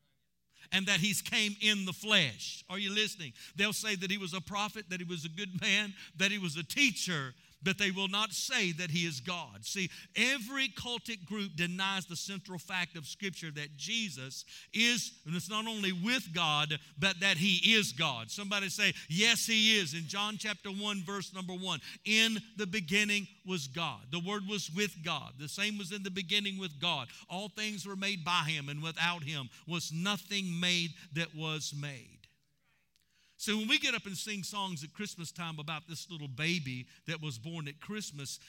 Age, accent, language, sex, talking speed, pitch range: 50-69, American, English, male, 195 wpm, 155-205 Hz